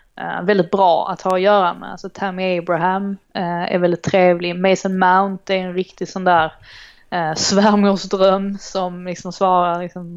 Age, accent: 20-39, native